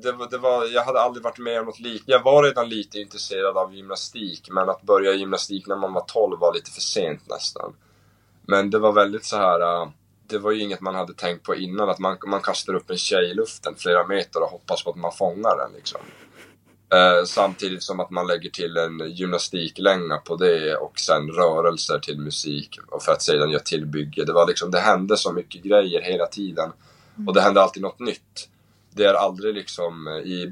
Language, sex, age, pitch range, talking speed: English, male, 20-39, 85-145 Hz, 210 wpm